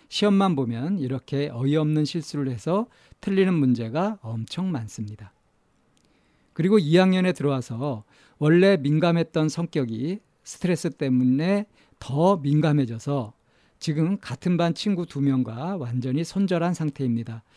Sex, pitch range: male, 130-175 Hz